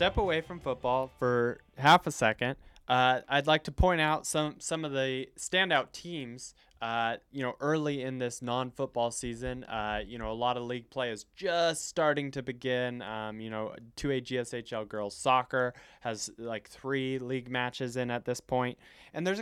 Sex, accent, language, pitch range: male, American, English, 120-150 Hz